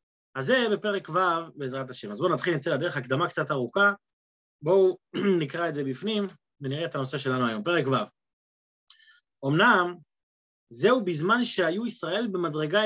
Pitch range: 170-240 Hz